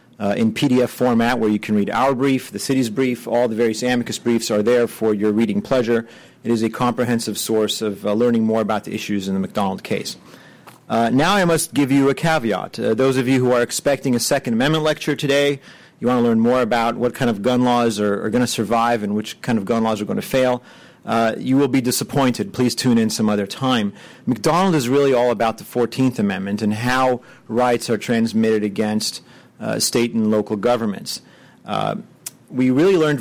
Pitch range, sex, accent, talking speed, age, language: 110-130 Hz, male, American, 215 wpm, 40-59, English